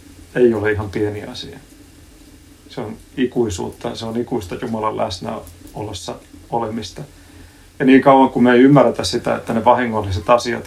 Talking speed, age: 145 wpm, 30-49